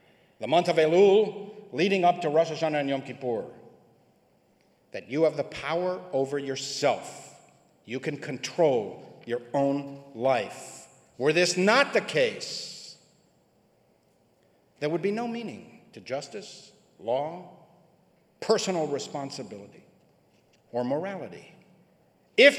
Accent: American